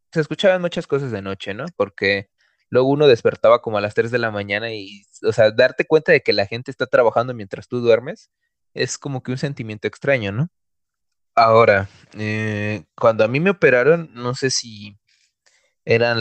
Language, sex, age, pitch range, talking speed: Spanish, male, 20-39, 105-150 Hz, 185 wpm